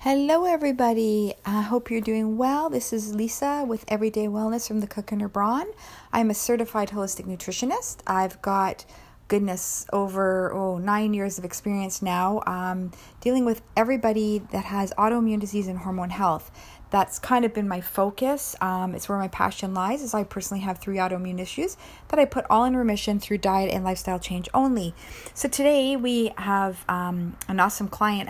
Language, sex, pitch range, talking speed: English, female, 185-230 Hz, 175 wpm